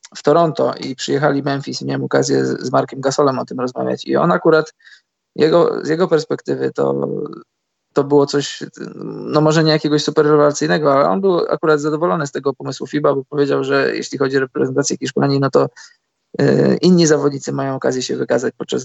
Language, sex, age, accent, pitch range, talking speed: Polish, male, 20-39, native, 130-150 Hz, 185 wpm